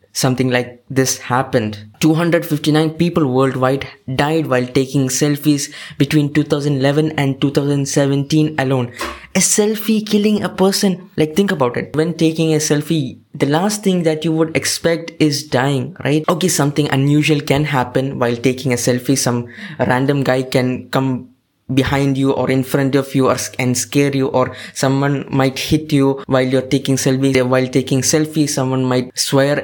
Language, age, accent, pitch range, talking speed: English, 20-39, Indian, 130-150 Hz, 160 wpm